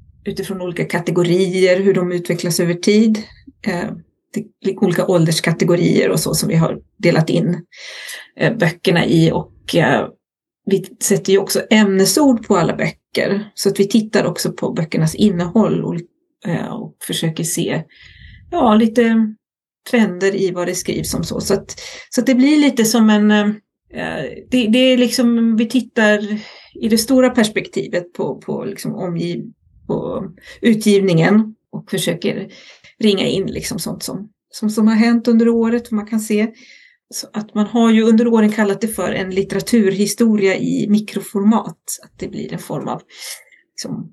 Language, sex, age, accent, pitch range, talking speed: Swedish, female, 30-49, native, 185-225 Hz, 140 wpm